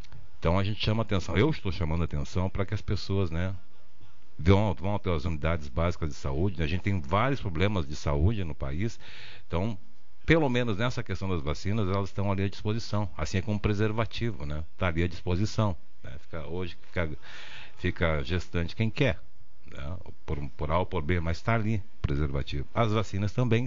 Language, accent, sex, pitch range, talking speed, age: Portuguese, Brazilian, male, 85-115 Hz, 185 wpm, 60-79